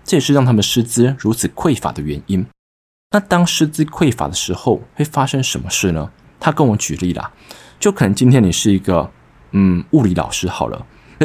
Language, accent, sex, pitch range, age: Chinese, native, male, 95-140 Hz, 20-39